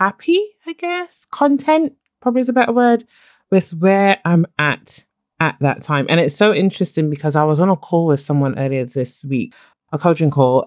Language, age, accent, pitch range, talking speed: English, 20-39, British, 155-230 Hz, 190 wpm